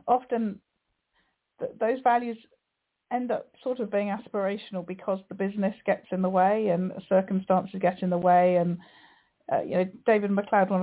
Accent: British